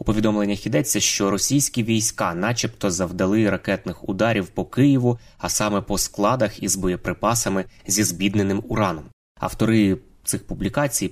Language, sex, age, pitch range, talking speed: Ukrainian, male, 20-39, 95-115 Hz, 130 wpm